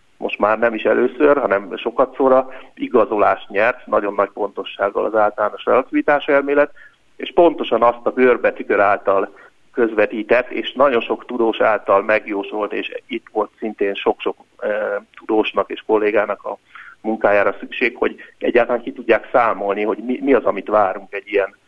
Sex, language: male, Hungarian